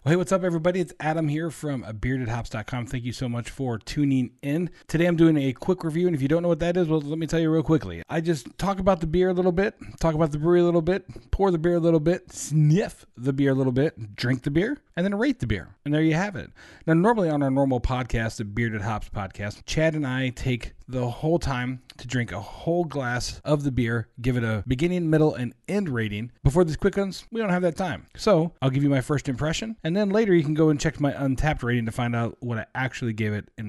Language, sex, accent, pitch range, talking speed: English, male, American, 115-160 Hz, 260 wpm